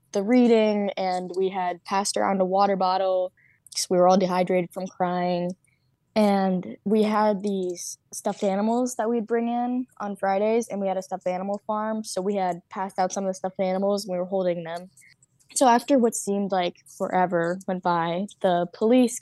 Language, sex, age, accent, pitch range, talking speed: English, female, 10-29, American, 180-210 Hz, 195 wpm